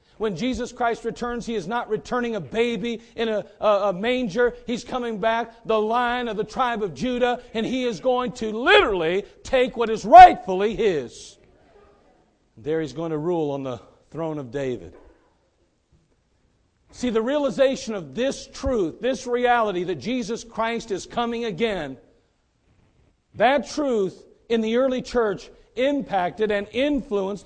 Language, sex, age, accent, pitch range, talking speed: English, male, 50-69, American, 165-245 Hz, 150 wpm